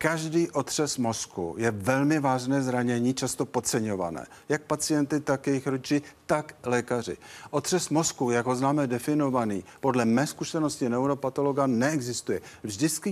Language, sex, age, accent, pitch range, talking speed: Czech, male, 50-69, native, 125-160 Hz, 130 wpm